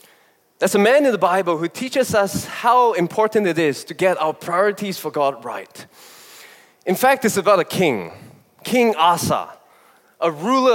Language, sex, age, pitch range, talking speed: English, male, 20-39, 175-230 Hz, 165 wpm